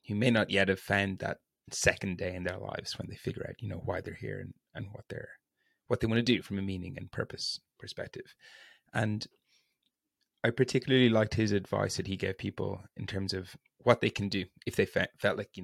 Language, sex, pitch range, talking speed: English, male, 95-115 Hz, 230 wpm